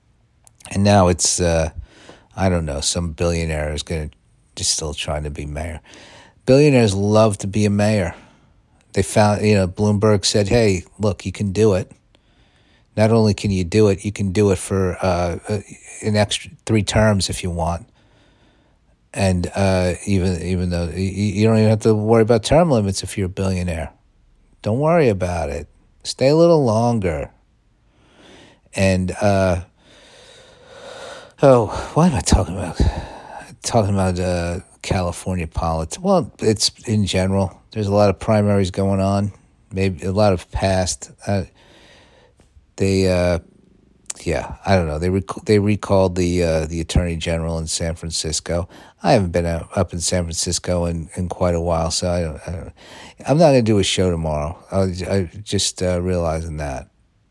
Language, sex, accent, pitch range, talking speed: English, male, American, 85-105 Hz, 170 wpm